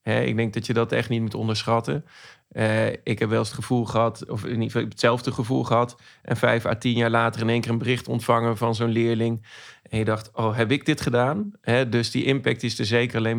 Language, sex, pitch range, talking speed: Dutch, male, 110-120 Hz, 250 wpm